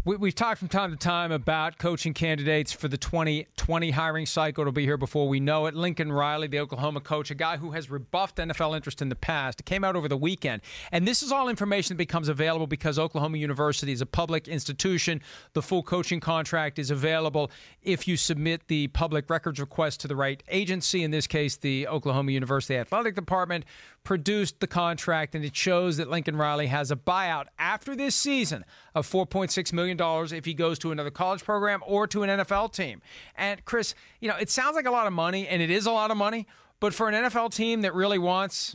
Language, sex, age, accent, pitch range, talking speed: English, male, 40-59, American, 155-195 Hz, 215 wpm